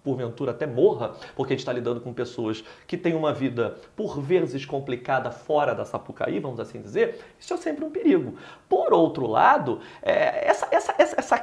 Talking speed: 180 wpm